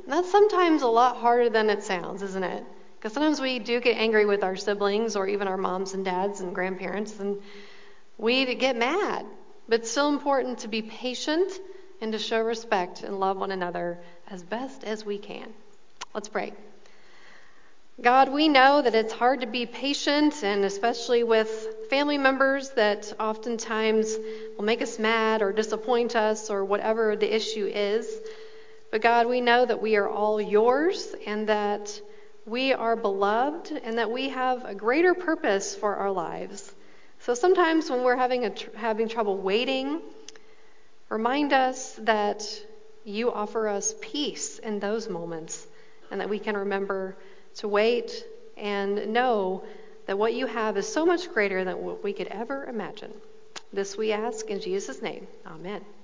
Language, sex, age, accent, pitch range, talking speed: English, female, 40-59, American, 205-265 Hz, 165 wpm